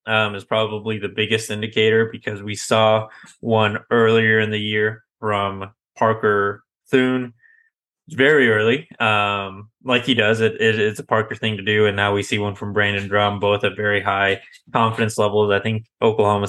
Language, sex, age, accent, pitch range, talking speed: English, male, 20-39, American, 105-115 Hz, 175 wpm